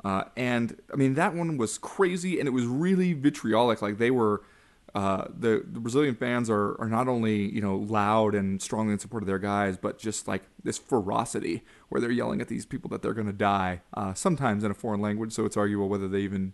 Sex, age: male, 20-39